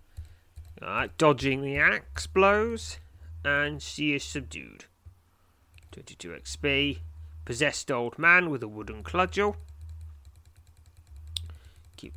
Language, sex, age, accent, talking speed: English, male, 30-49, British, 95 wpm